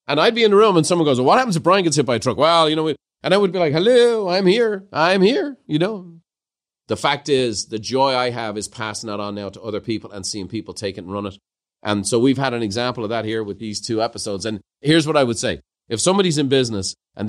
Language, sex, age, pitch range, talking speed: English, male, 40-59, 110-140 Hz, 285 wpm